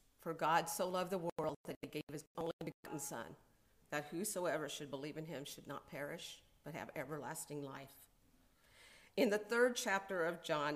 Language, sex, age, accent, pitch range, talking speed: English, female, 50-69, American, 160-190 Hz, 180 wpm